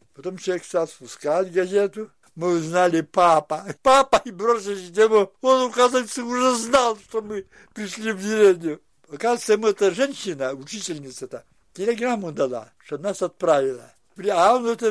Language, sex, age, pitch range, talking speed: Russian, male, 60-79, 140-205 Hz, 140 wpm